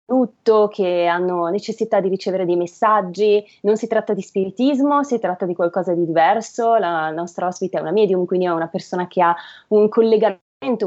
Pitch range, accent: 180-220 Hz, native